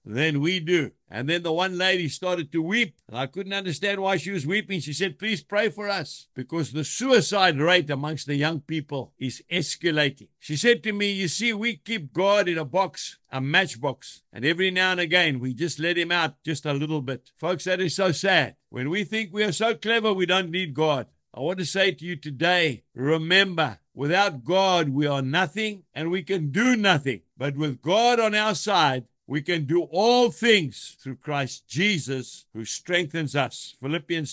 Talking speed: 200 wpm